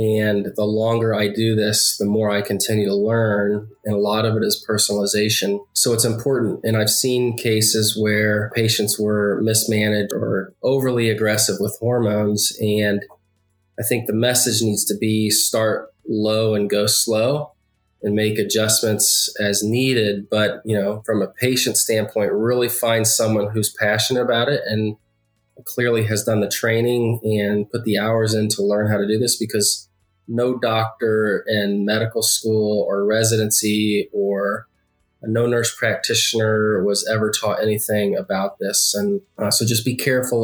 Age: 20-39